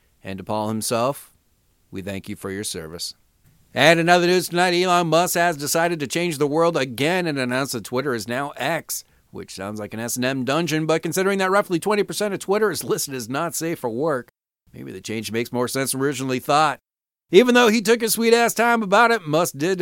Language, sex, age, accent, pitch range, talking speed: English, male, 40-59, American, 125-185 Hz, 215 wpm